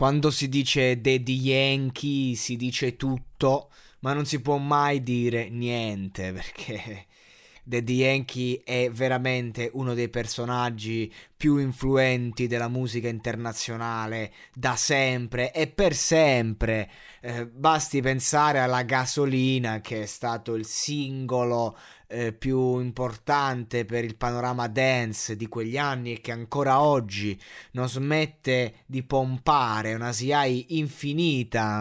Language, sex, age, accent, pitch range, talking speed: Italian, male, 20-39, native, 120-140 Hz, 120 wpm